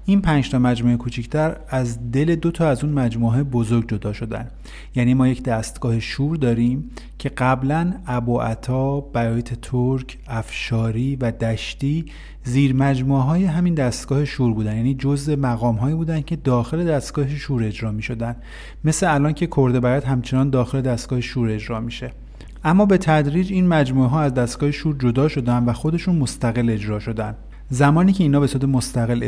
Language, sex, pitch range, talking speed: Persian, male, 115-140 Hz, 165 wpm